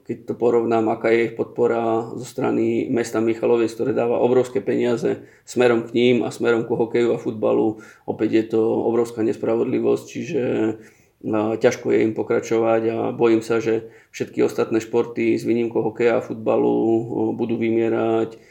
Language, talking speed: Slovak, 155 wpm